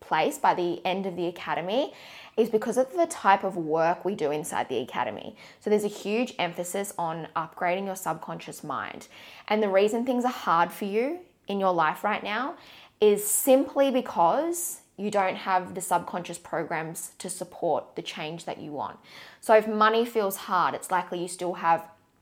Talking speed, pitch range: 185 wpm, 175-210 Hz